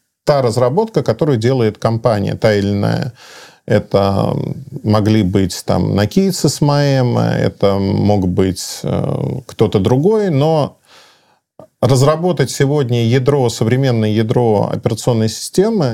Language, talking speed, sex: Russian, 100 wpm, male